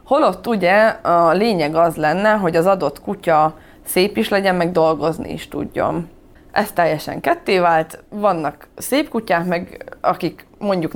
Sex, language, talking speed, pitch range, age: female, Hungarian, 150 wpm, 160-210 Hz, 20-39